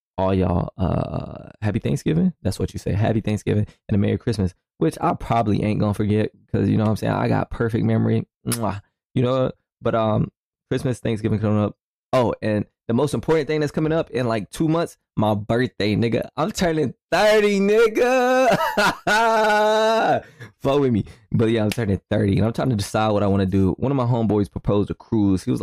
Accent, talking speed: American, 200 wpm